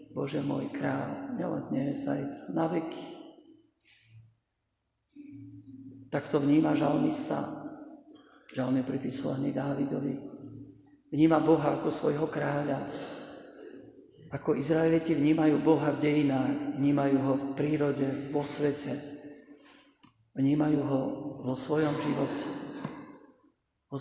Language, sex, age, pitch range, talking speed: Slovak, male, 50-69, 145-165 Hz, 95 wpm